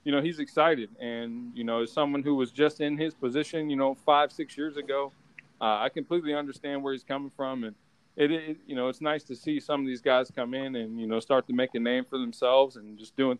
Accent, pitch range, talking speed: American, 125-150 Hz, 255 wpm